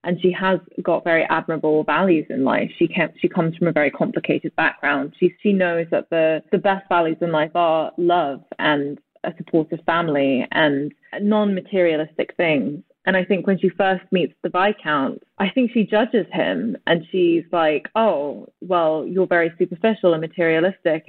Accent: British